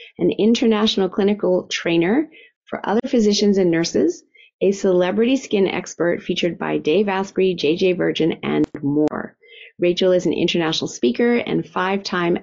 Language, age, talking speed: English, 30-49, 135 wpm